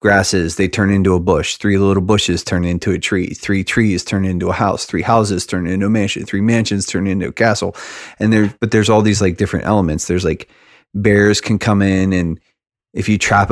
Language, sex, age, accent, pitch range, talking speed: English, male, 30-49, American, 95-110 Hz, 220 wpm